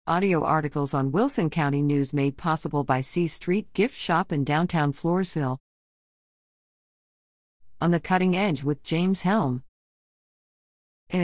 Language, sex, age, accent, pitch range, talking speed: English, female, 50-69, American, 145-190 Hz, 130 wpm